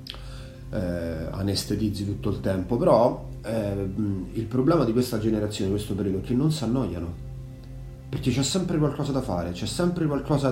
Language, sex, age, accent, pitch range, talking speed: Italian, male, 30-49, native, 95-130 Hz, 165 wpm